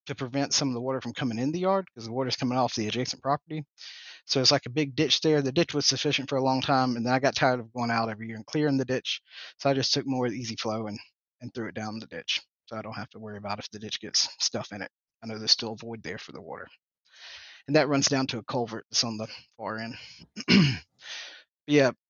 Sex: male